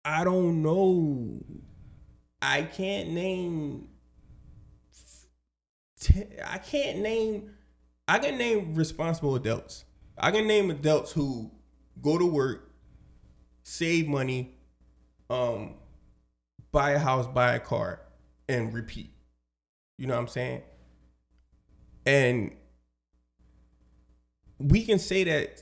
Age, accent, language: 20-39, American, English